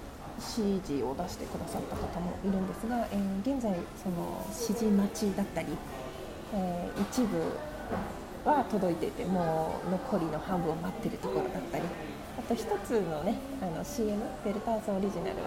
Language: Japanese